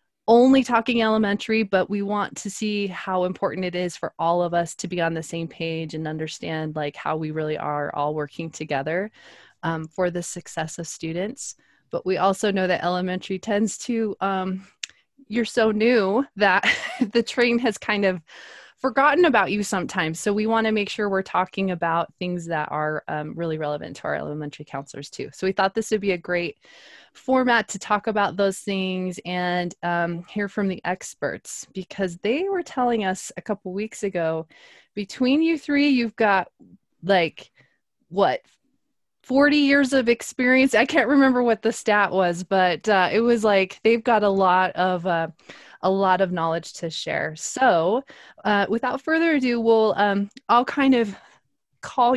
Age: 20-39